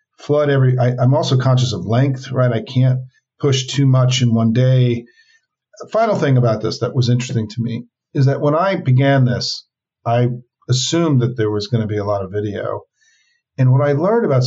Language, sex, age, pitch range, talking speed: English, male, 50-69, 115-135 Hz, 200 wpm